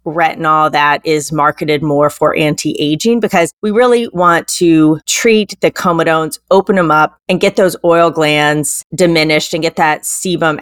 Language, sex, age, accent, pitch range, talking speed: English, female, 30-49, American, 150-200 Hz, 160 wpm